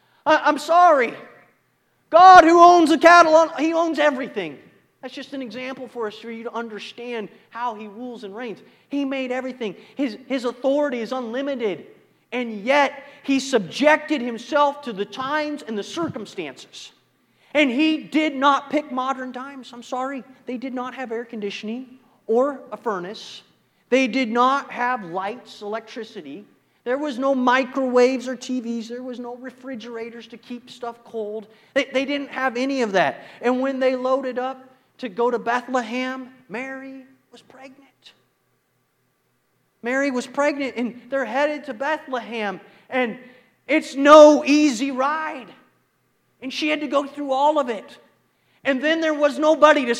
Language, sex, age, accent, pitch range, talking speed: English, male, 30-49, American, 235-280 Hz, 155 wpm